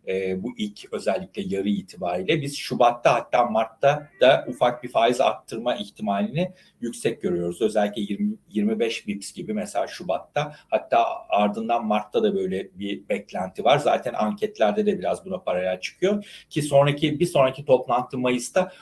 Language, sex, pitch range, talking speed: Turkish, male, 115-160 Hz, 145 wpm